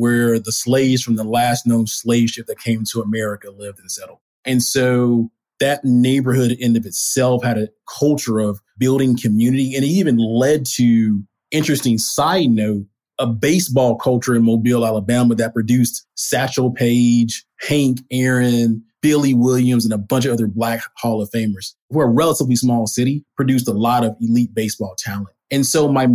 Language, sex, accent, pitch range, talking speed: English, male, American, 115-130 Hz, 175 wpm